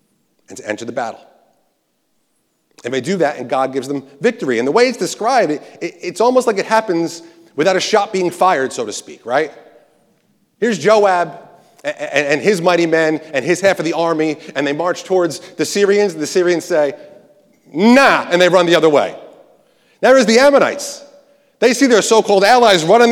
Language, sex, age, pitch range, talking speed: English, male, 40-59, 160-225 Hz, 195 wpm